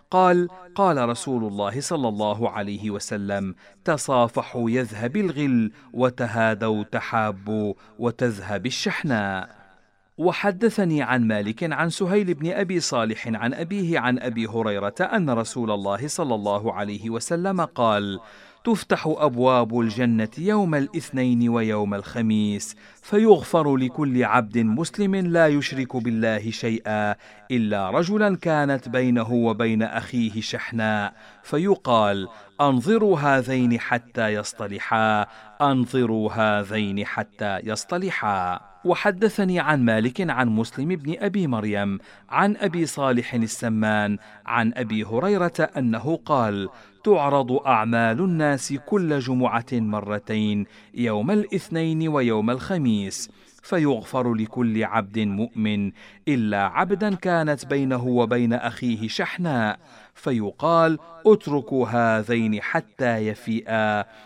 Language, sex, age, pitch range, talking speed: Arabic, male, 50-69, 110-155 Hz, 105 wpm